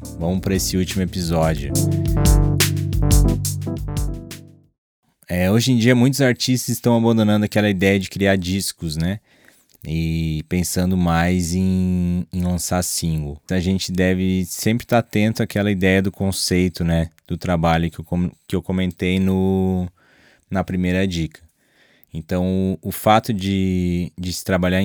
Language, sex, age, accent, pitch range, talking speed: Portuguese, male, 20-39, Brazilian, 85-95 Hz, 140 wpm